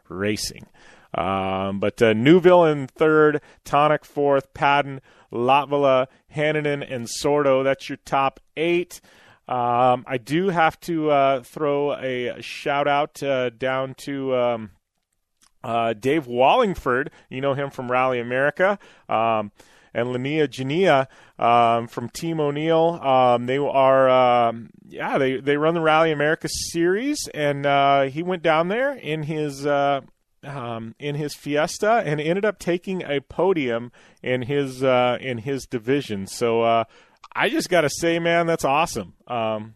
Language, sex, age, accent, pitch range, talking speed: English, male, 30-49, American, 115-150 Hz, 145 wpm